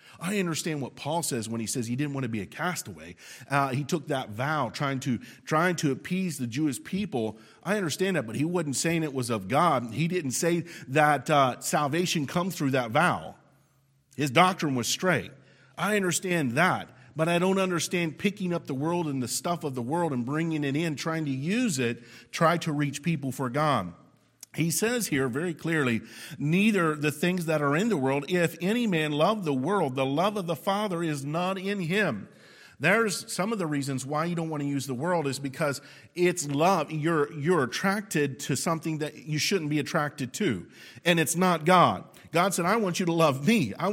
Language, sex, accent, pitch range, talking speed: English, male, American, 135-180 Hz, 210 wpm